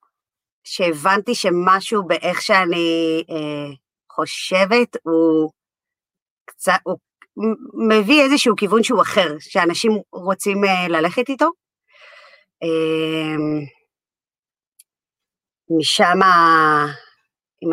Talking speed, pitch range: 75 wpm, 160-215 Hz